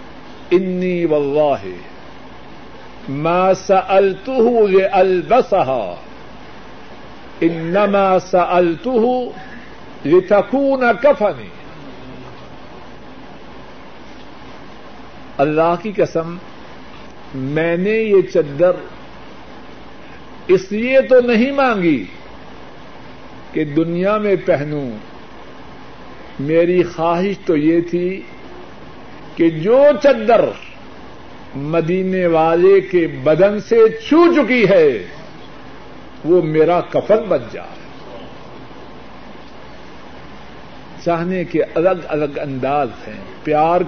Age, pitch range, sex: 60-79, 165-210 Hz, male